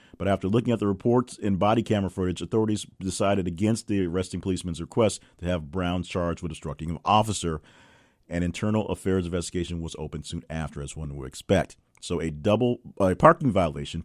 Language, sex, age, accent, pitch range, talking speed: English, male, 40-59, American, 85-105 Hz, 185 wpm